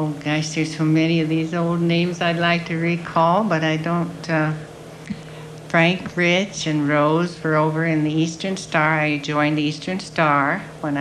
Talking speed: 180 wpm